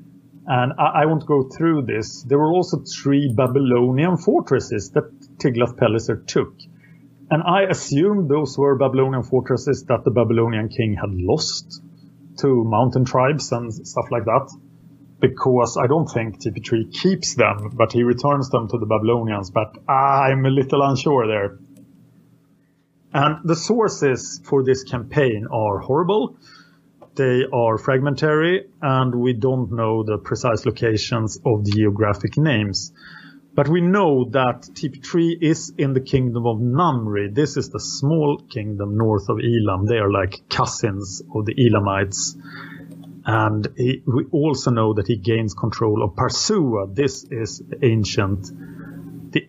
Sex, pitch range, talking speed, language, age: male, 115-145 Hz, 145 wpm, English, 30-49